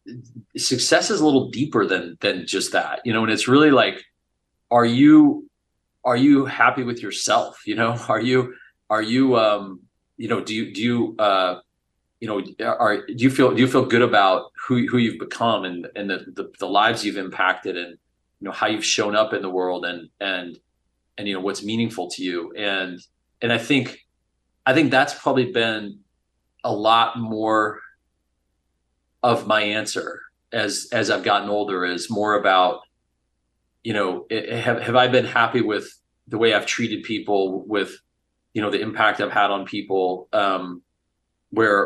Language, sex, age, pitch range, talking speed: English, male, 30-49, 90-115 Hz, 180 wpm